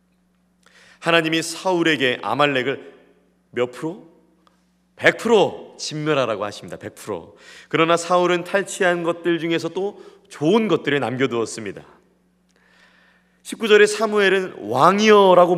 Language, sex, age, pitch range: Korean, male, 30-49, 140-190 Hz